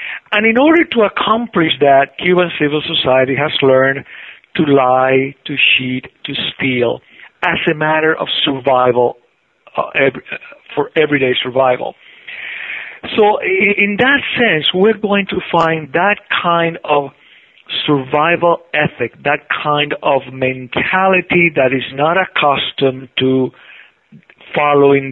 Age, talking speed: 50-69, 115 wpm